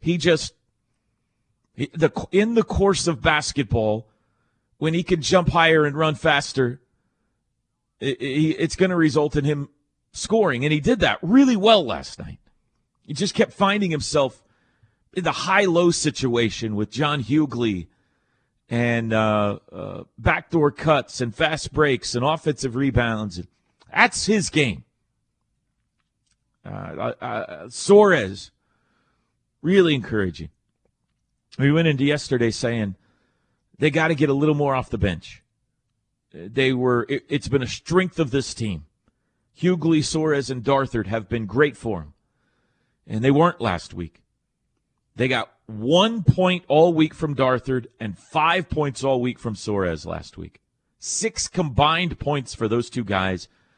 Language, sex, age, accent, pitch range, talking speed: English, male, 40-59, American, 115-155 Hz, 140 wpm